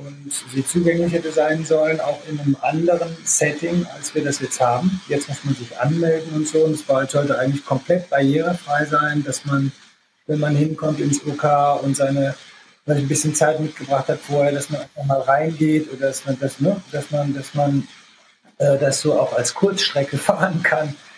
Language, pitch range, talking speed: German, 135-155 Hz, 190 wpm